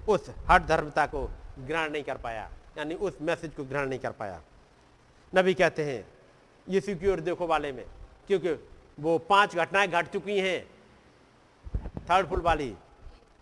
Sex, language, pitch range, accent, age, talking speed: male, Hindi, 180-285 Hz, native, 50-69, 155 wpm